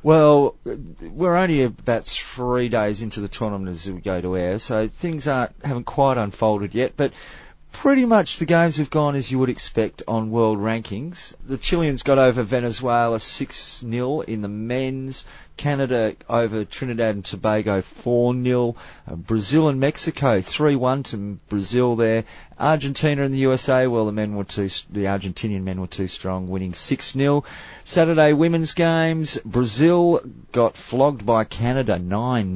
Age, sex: 30-49, male